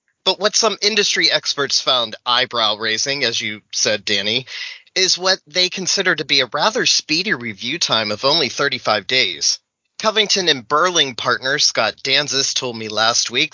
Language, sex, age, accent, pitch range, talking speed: English, male, 30-49, American, 125-180 Hz, 160 wpm